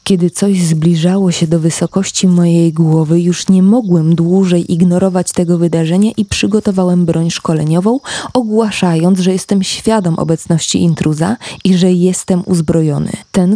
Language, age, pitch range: Polish, 20-39, 170-210 Hz